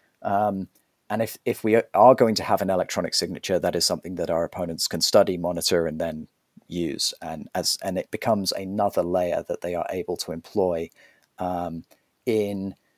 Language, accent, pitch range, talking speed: English, British, 90-110 Hz, 180 wpm